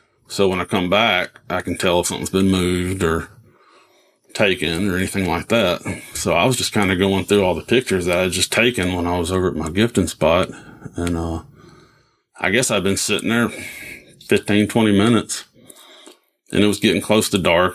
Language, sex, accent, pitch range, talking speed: English, male, American, 90-110 Hz, 205 wpm